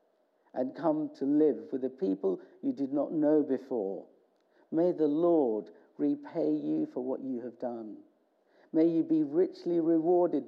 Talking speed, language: 155 wpm, English